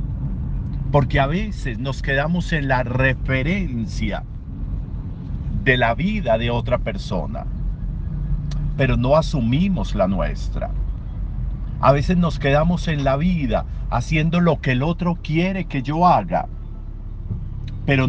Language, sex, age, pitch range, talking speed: Spanish, male, 50-69, 110-155 Hz, 120 wpm